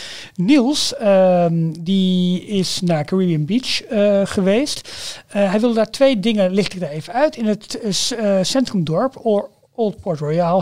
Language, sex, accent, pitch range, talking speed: Dutch, male, Dutch, 165-205 Hz, 160 wpm